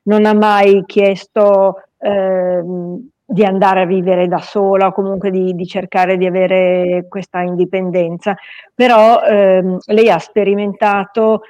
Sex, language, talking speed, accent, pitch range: female, Italian, 130 wpm, native, 180-205 Hz